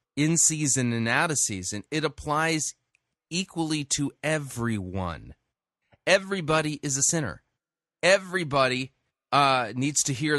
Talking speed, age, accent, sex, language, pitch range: 115 wpm, 30-49, American, male, English, 130-155 Hz